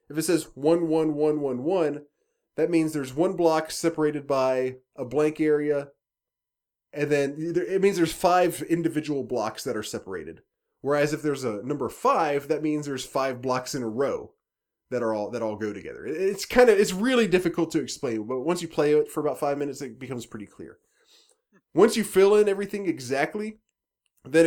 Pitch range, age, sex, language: 125-170 Hz, 20-39, male, English